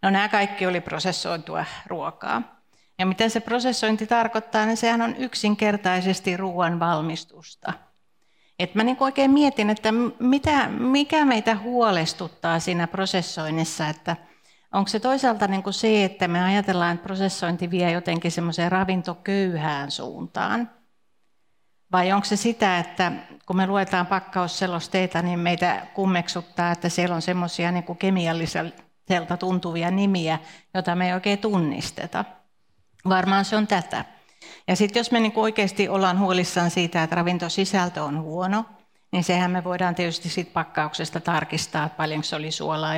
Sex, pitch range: female, 170-205 Hz